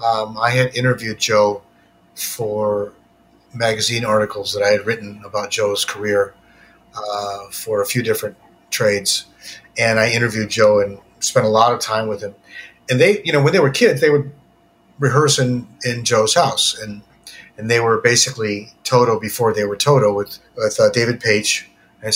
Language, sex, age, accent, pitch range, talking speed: English, male, 40-59, American, 105-130 Hz, 175 wpm